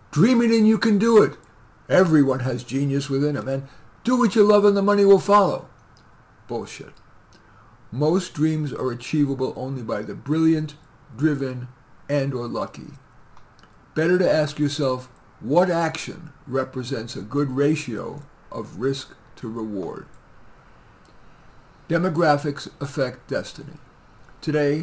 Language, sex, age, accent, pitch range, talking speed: English, male, 50-69, American, 130-160 Hz, 130 wpm